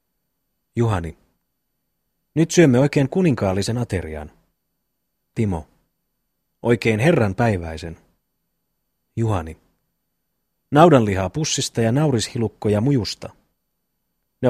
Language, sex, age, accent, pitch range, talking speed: Finnish, male, 30-49, native, 95-135 Hz, 65 wpm